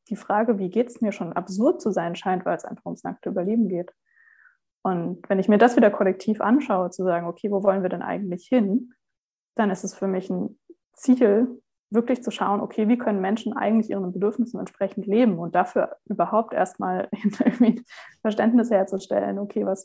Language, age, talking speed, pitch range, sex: German, 20-39, 185 wpm, 190-230 Hz, female